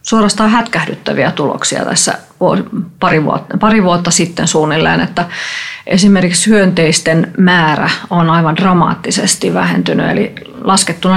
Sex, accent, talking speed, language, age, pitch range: female, native, 105 wpm, Finnish, 30-49, 170-215 Hz